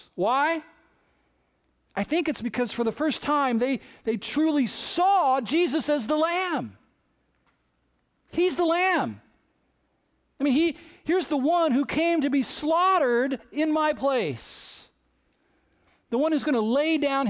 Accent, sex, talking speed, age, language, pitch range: American, male, 135 wpm, 40-59, English, 175-275 Hz